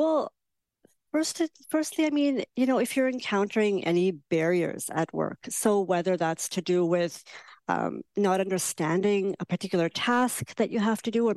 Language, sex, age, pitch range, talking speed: English, female, 50-69, 180-230 Hz, 170 wpm